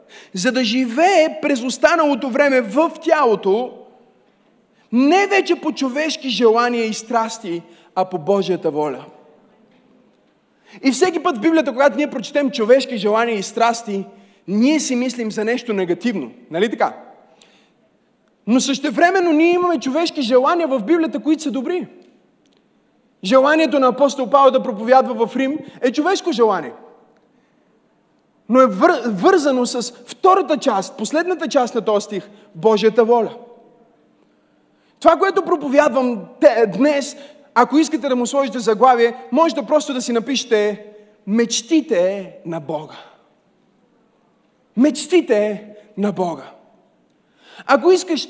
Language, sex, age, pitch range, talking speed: Bulgarian, male, 30-49, 225-305 Hz, 125 wpm